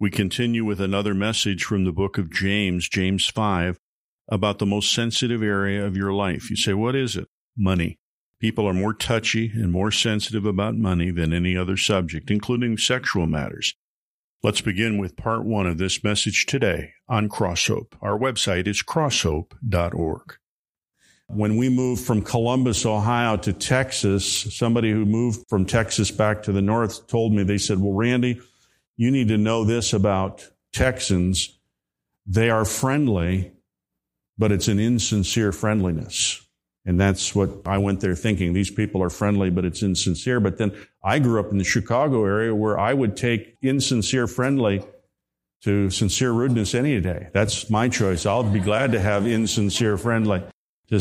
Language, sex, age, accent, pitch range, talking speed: English, male, 50-69, American, 95-115 Hz, 165 wpm